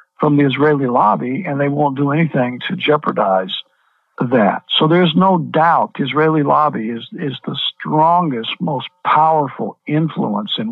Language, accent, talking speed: English, American, 145 wpm